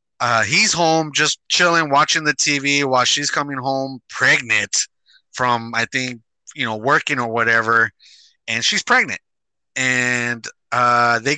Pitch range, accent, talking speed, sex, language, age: 115-150 Hz, American, 140 wpm, male, English, 30-49